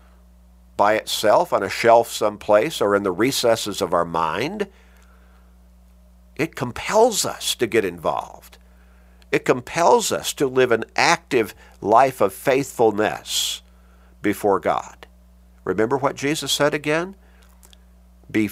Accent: American